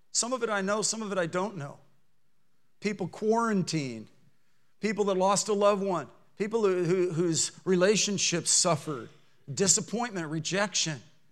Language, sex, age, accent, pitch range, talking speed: English, male, 50-69, American, 165-205 Hz, 135 wpm